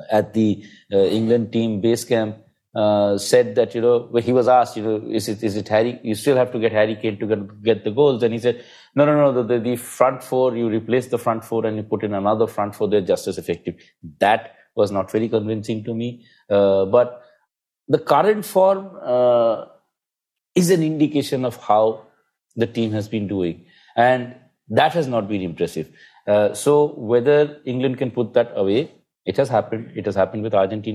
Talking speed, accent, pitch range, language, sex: 205 wpm, Indian, 110-135 Hz, English, male